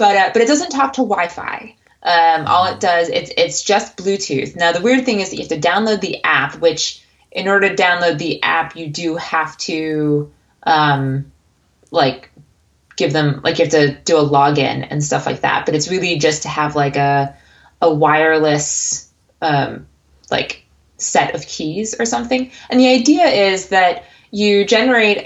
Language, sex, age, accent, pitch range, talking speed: English, female, 20-39, American, 155-205 Hz, 185 wpm